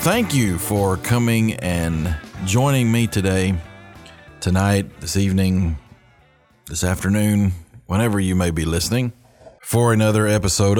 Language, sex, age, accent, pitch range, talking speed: English, male, 40-59, American, 95-120 Hz, 115 wpm